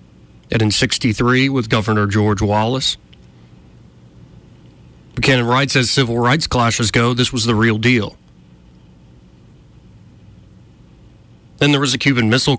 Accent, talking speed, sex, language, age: American, 120 wpm, male, English, 40-59